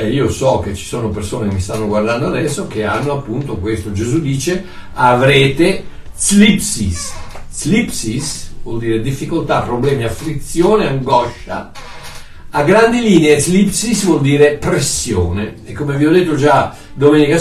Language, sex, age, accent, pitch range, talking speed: Italian, male, 60-79, native, 120-180 Hz, 140 wpm